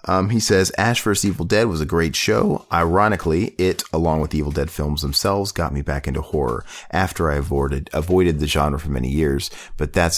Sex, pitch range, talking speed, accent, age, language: male, 70-90 Hz, 210 wpm, American, 40-59, English